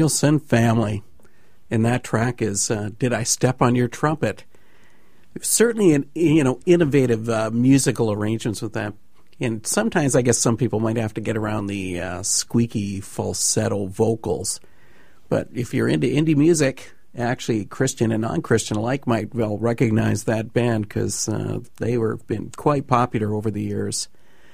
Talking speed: 160 wpm